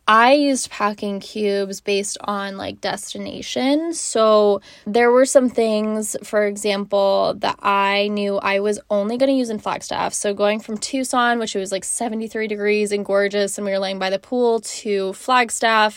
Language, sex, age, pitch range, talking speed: English, female, 10-29, 195-225 Hz, 175 wpm